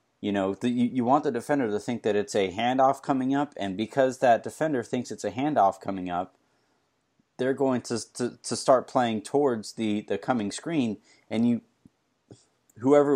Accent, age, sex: American, 30-49, male